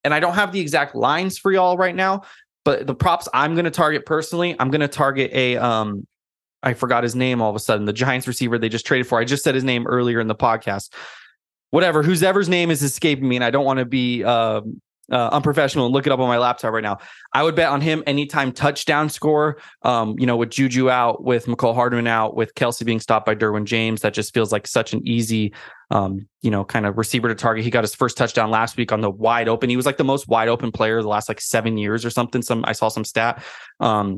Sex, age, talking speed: male, 20-39, 255 wpm